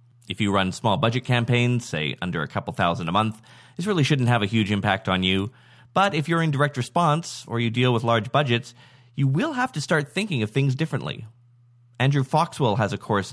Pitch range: 110-140 Hz